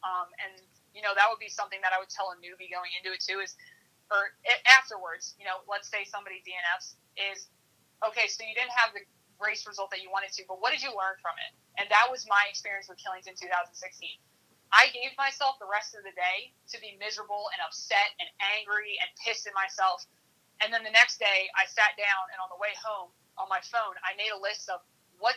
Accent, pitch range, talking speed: American, 185-225 Hz, 230 wpm